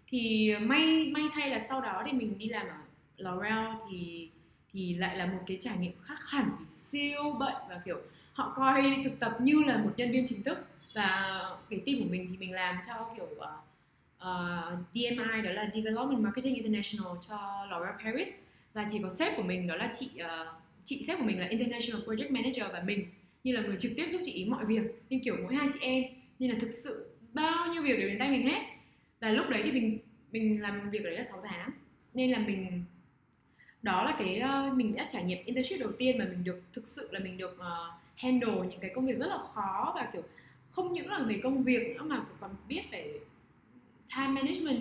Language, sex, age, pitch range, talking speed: Vietnamese, female, 10-29, 195-260 Hz, 220 wpm